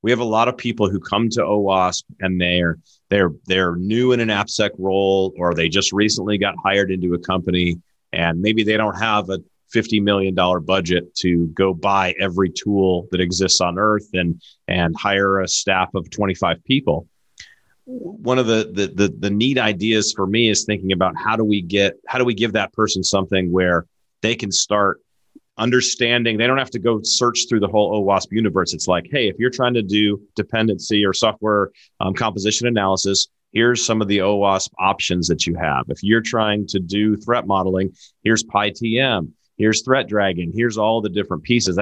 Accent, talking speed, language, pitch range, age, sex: American, 195 wpm, English, 95-115 Hz, 30-49, male